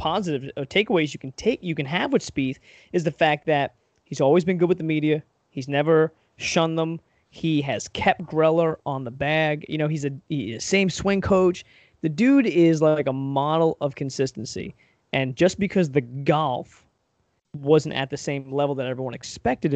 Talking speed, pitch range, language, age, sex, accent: 185 wpm, 135-165 Hz, English, 20-39, male, American